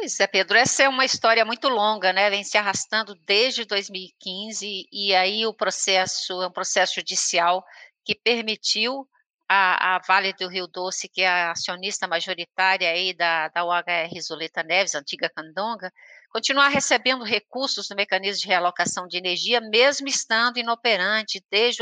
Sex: female